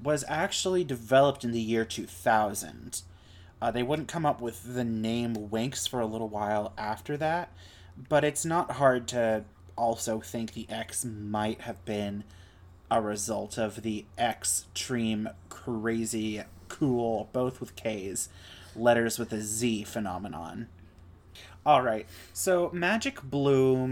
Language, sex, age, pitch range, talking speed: English, male, 30-49, 105-130 Hz, 135 wpm